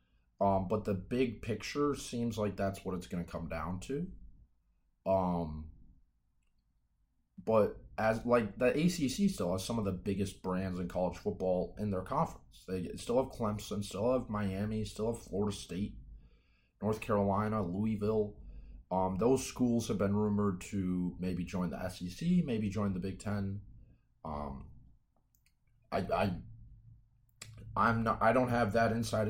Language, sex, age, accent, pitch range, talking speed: English, male, 30-49, American, 90-115 Hz, 150 wpm